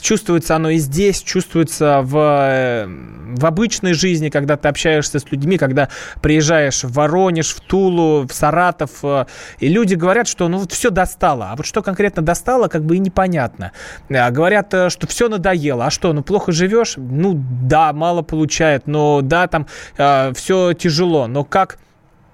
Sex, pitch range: male, 150-190 Hz